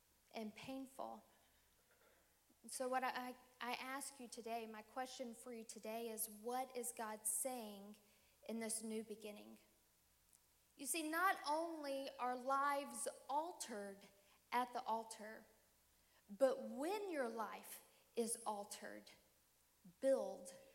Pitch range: 225-295 Hz